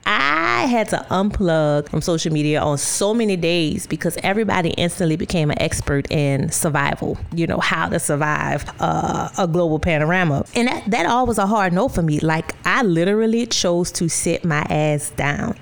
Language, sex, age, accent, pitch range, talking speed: English, female, 30-49, American, 155-200 Hz, 180 wpm